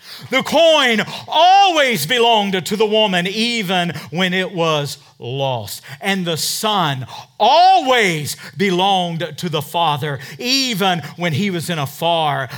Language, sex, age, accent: English, male, 40-59, American